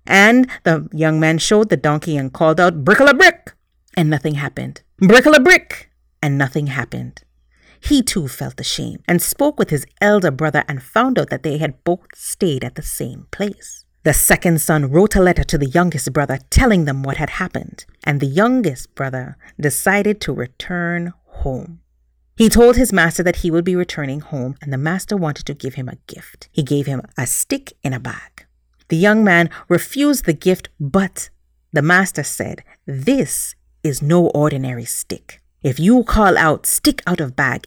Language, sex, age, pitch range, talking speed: English, female, 40-59, 135-185 Hz, 190 wpm